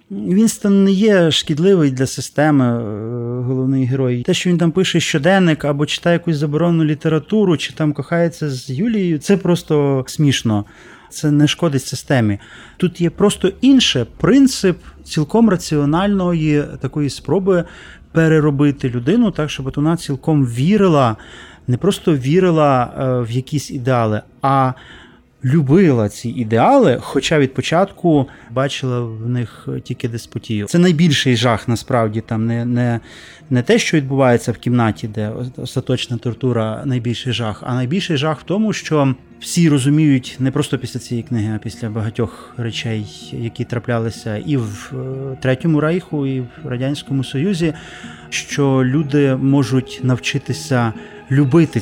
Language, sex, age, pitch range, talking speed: Ukrainian, male, 30-49, 125-160 Hz, 135 wpm